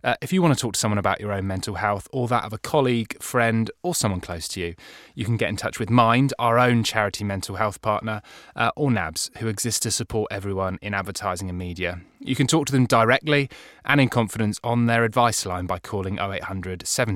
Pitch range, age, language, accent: 105-145 Hz, 20-39, English, British